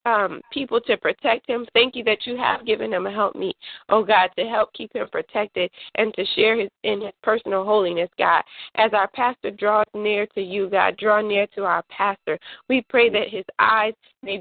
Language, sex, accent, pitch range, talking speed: English, female, American, 195-235 Hz, 210 wpm